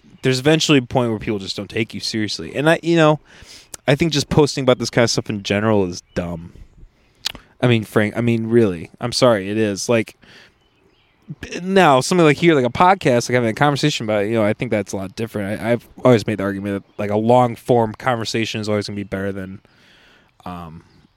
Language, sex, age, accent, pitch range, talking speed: English, male, 20-39, American, 100-130 Hz, 220 wpm